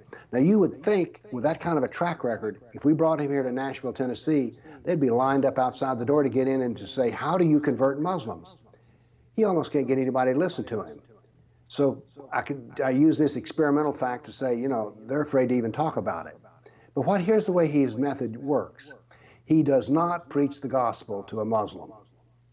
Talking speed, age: 220 wpm, 60-79